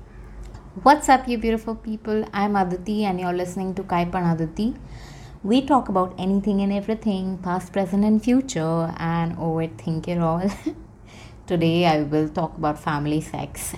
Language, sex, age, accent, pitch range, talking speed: Hindi, female, 20-39, native, 170-215 Hz, 150 wpm